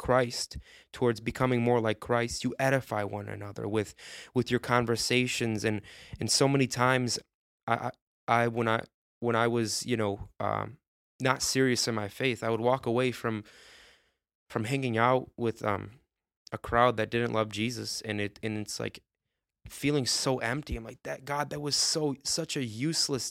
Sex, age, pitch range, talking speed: male, 20-39, 115-130 Hz, 180 wpm